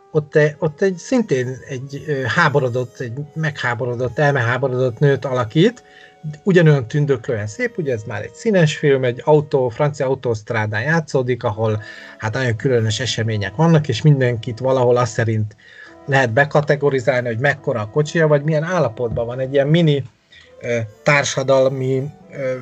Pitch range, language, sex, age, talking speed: 125-155 Hz, Hungarian, male, 30-49, 135 wpm